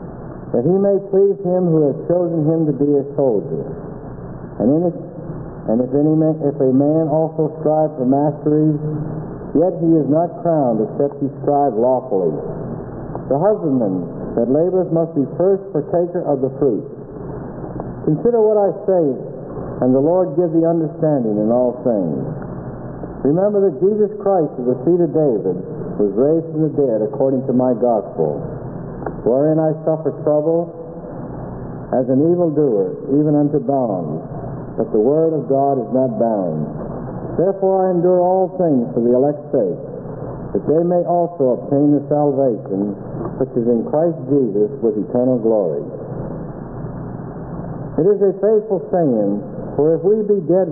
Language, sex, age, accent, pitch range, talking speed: English, male, 60-79, American, 130-170 Hz, 155 wpm